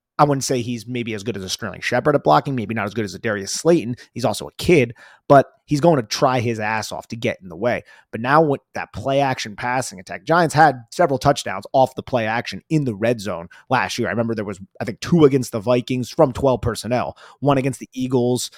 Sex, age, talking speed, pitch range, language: male, 30-49, 250 wpm, 110-130 Hz, English